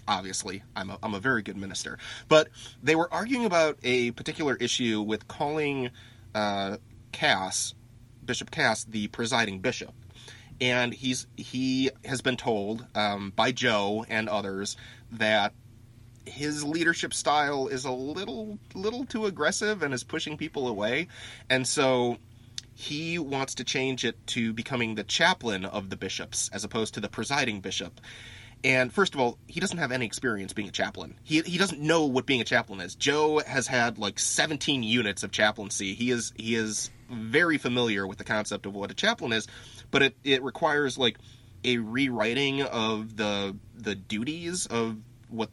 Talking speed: 165 wpm